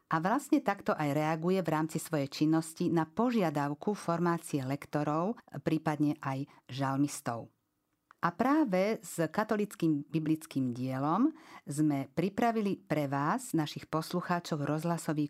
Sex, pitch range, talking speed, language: female, 145-180 Hz, 115 wpm, Slovak